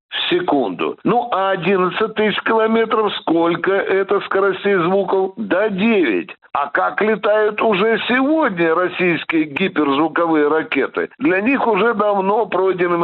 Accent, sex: native, male